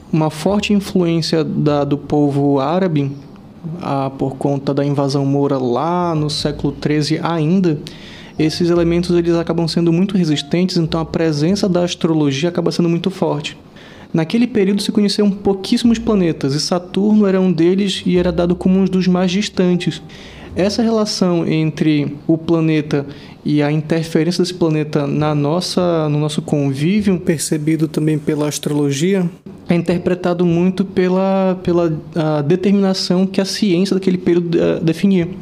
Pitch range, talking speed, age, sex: 150-185 Hz, 140 wpm, 20-39, male